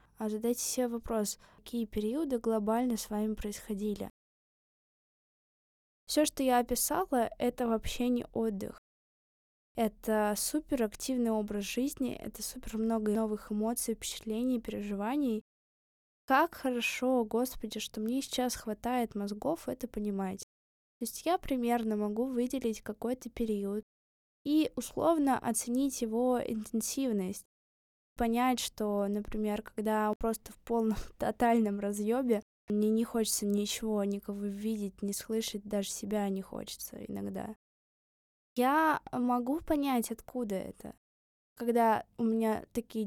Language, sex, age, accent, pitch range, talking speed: Russian, female, 20-39, native, 215-245 Hz, 115 wpm